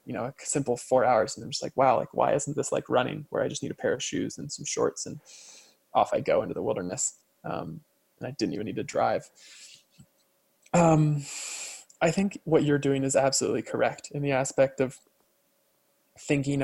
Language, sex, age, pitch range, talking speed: English, male, 20-39, 130-165 Hz, 205 wpm